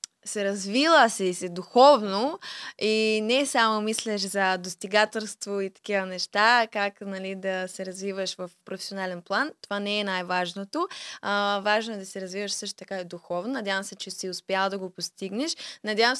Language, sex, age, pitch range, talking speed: Bulgarian, female, 20-39, 190-230 Hz, 170 wpm